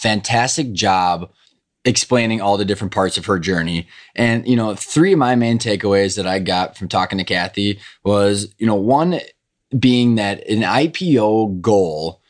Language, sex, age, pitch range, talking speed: English, male, 20-39, 100-125 Hz, 165 wpm